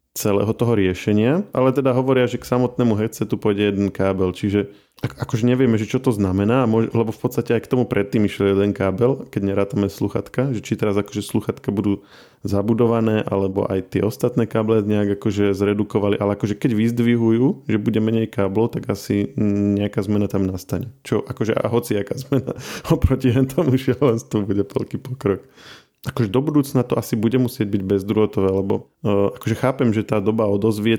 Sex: male